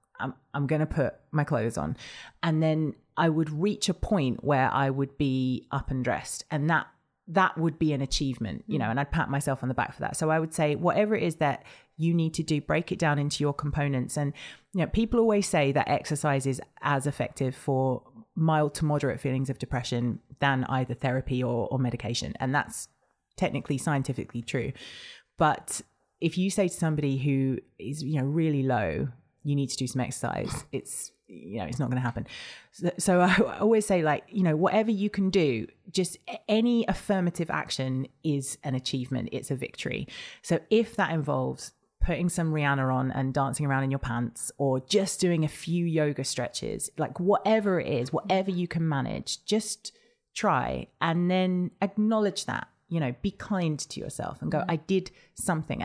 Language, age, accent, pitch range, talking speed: English, 30-49, British, 135-175 Hz, 195 wpm